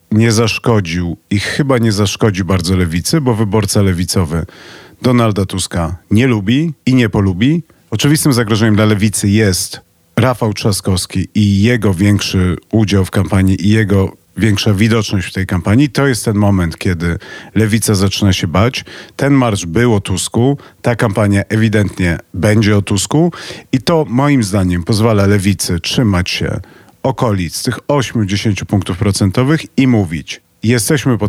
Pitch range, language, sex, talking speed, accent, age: 95-125 Hz, Polish, male, 145 wpm, native, 40-59